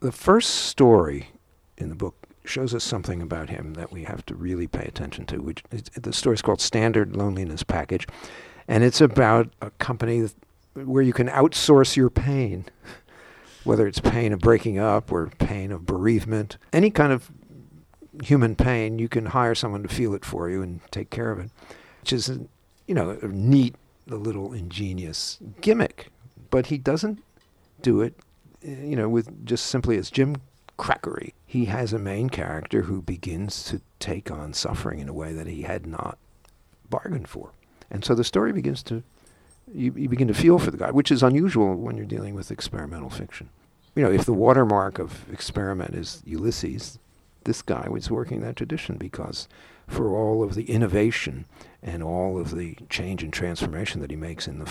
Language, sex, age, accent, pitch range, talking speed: English, male, 50-69, American, 90-125 Hz, 185 wpm